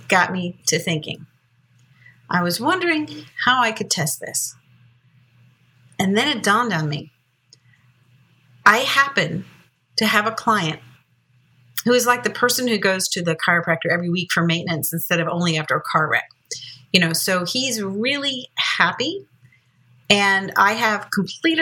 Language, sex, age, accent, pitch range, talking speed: English, female, 50-69, American, 155-210 Hz, 155 wpm